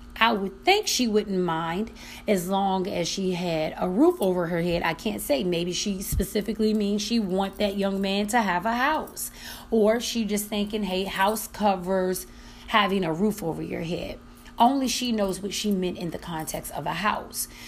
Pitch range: 175-215 Hz